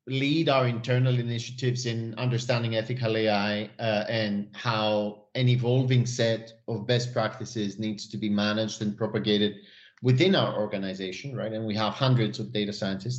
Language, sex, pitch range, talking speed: English, male, 110-130 Hz, 155 wpm